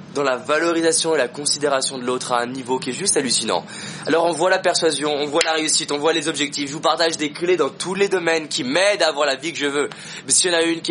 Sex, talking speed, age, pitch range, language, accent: male, 290 wpm, 20-39, 155-185 Hz, French, French